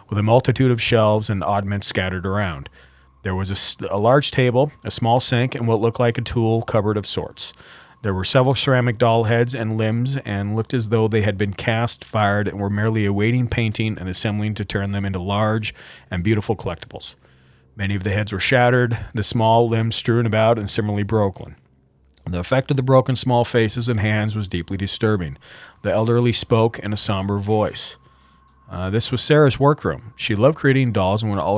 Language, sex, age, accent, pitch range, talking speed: English, male, 40-59, American, 100-125 Hz, 200 wpm